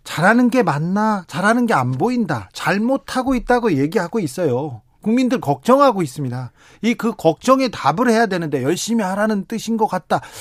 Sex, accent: male, native